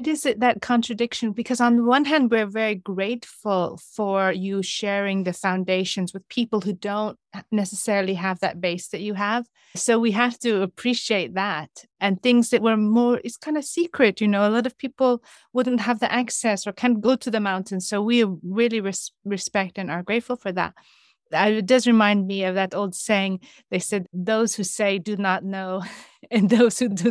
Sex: female